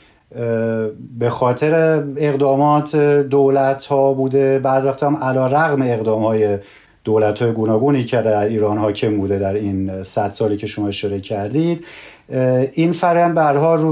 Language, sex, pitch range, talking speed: Persian, male, 115-145 Hz, 140 wpm